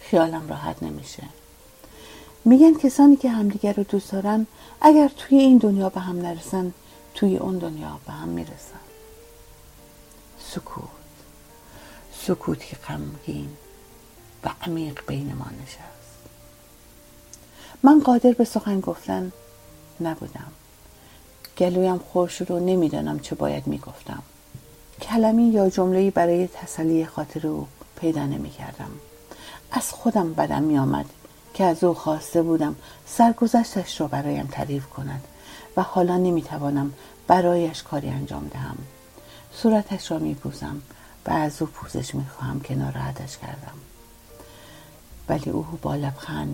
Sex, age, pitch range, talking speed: female, 50-69, 130-200 Hz, 115 wpm